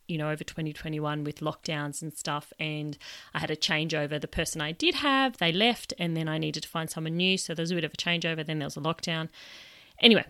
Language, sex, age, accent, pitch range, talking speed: English, female, 30-49, Australian, 150-185 Hz, 240 wpm